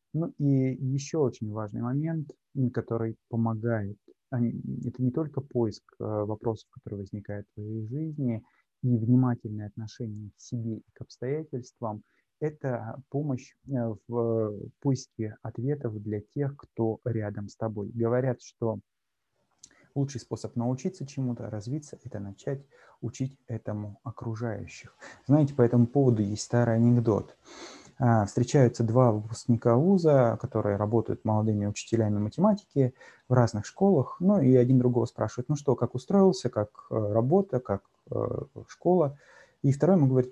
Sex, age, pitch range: male, 30-49, 115-140 Hz